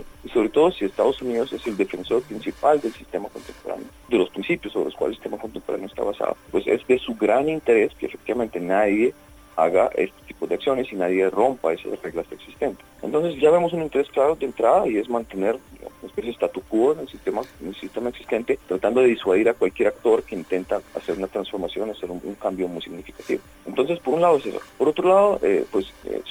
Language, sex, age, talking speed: Spanish, male, 40-59, 220 wpm